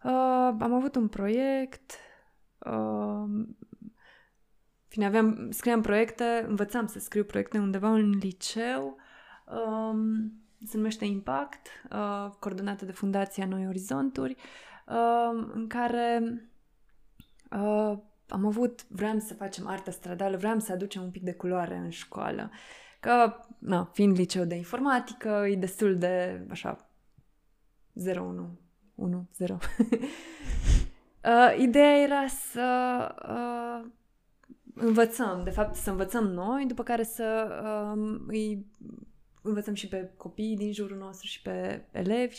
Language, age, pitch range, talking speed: Romanian, 20-39, 195-235 Hz, 120 wpm